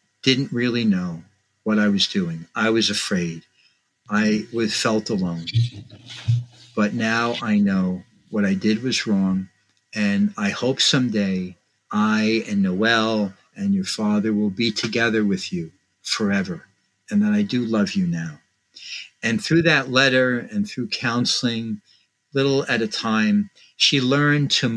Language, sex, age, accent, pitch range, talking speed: English, male, 50-69, American, 110-170 Hz, 145 wpm